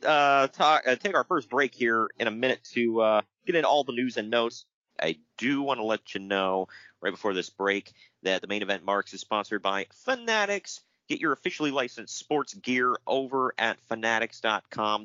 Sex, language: male, English